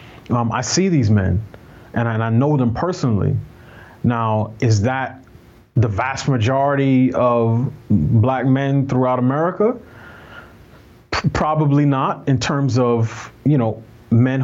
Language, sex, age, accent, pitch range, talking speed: English, male, 30-49, American, 110-140 Hz, 135 wpm